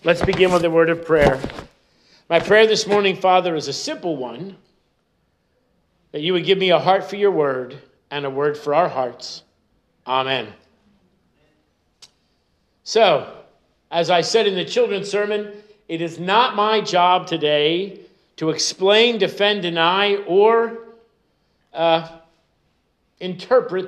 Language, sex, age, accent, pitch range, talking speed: English, male, 50-69, American, 160-200 Hz, 135 wpm